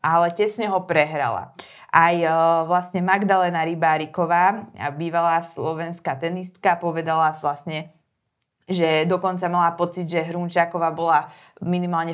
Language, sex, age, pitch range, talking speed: Slovak, female, 20-39, 170-200 Hz, 110 wpm